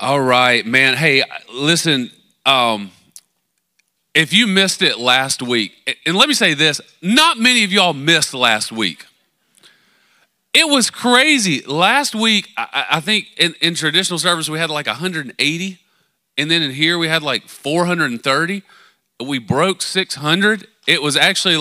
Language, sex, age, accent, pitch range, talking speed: English, male, 30-49, American, 120-195 Hz, 150 wpm